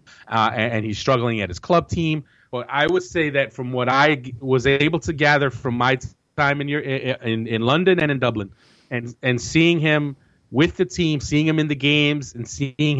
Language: English